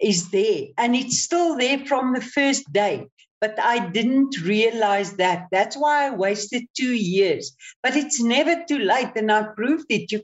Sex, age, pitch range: female, 60-79, 210-290 Hz